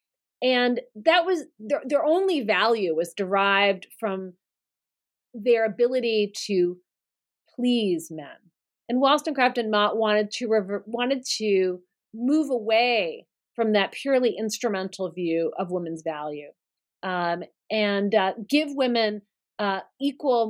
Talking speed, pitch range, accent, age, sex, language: 120 wpm, 195-250 Hz, American, 30-49, female, English